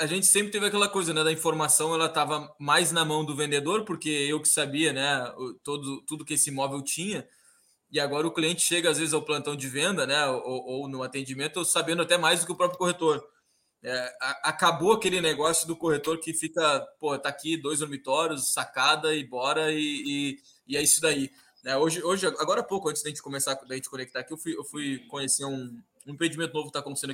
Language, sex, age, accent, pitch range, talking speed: Portuguese, male, 10-29, Brazilian, 140-170 Hz, 230 wpm